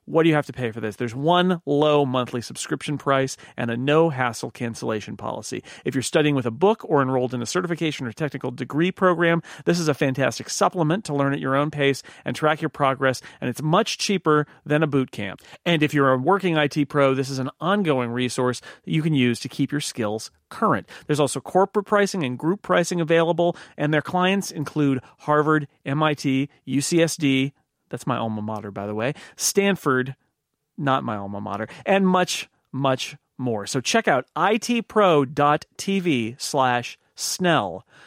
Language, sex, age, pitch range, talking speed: English, male, 40-59, 130-170 Hz, 180 wpm